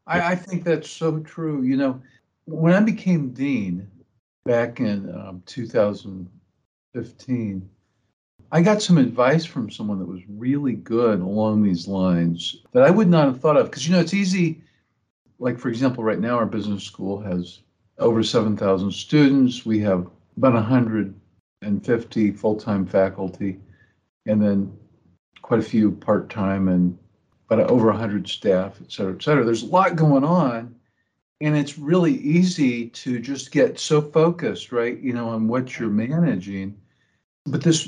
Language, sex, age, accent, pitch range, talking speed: English, male, 50-69, American, 100-145 Hz, 155 wpm